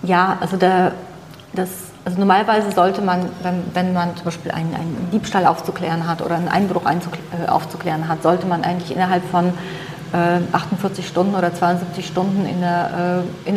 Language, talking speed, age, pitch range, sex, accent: German, 175 wpm, 30-49, 180-210 Hz, female, German